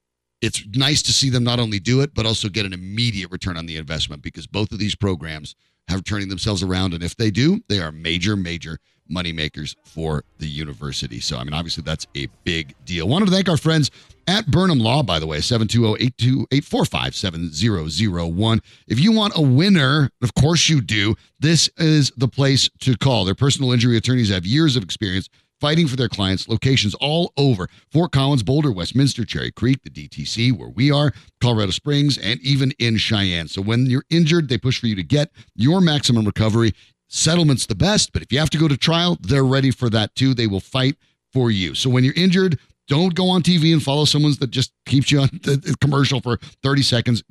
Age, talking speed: 40-59, 205 wpm